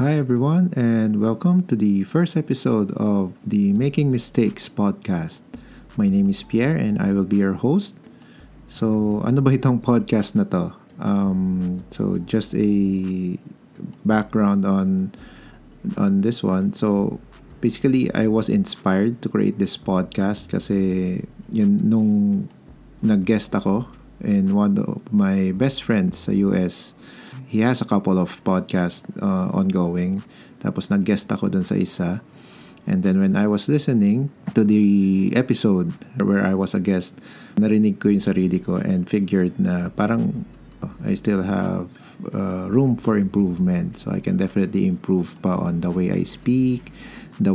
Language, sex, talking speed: Filipino, male, 145 wpm